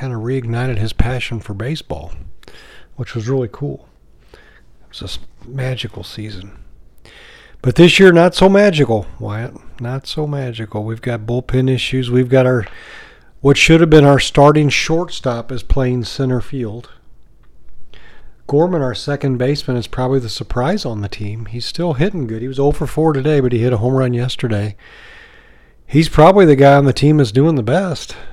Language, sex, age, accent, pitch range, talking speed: English, male, 40-59, American, 115-150 Hz, 175 wpm